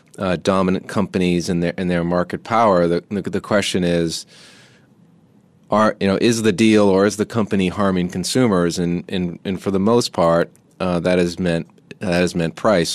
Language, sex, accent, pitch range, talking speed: English, male, American, 85-100 Hz, 190 wpm